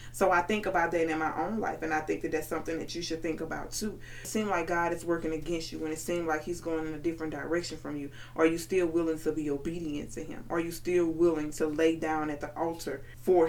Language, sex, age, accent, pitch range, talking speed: English, female, 20-39, American, 155-180 Hz, 270 wpm